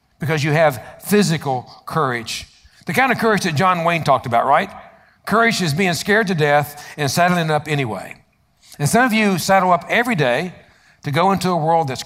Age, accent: 60-79, American